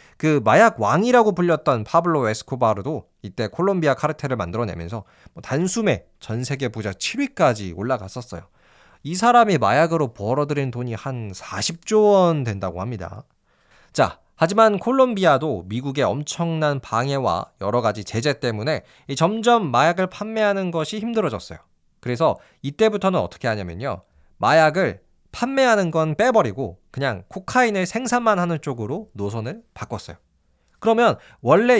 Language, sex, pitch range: Korean, male, 110-180 Hz